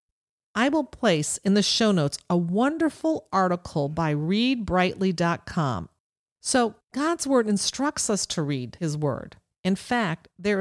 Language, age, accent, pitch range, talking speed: English, 50-69, American, 170-230 Hz, 135 wpm